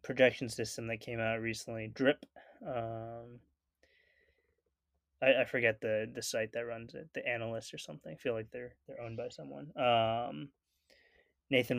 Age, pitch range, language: 20-39, 110-130 Hz, English